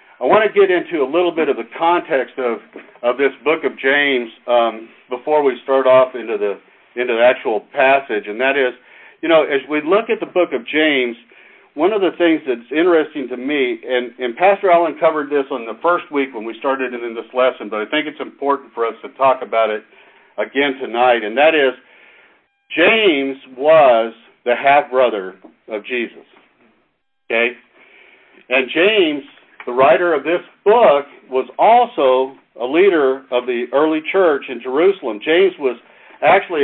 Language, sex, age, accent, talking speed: English, male, 60-79, American, 180 wpm